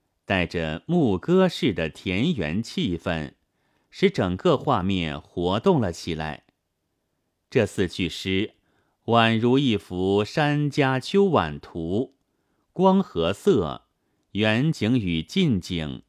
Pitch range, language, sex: 85-135 Hz, Chinese, male